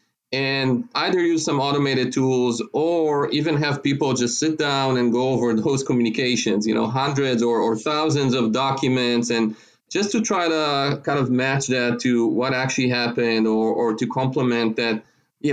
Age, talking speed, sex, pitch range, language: 30-49, 175 wpm, male, 115-145 Hz, English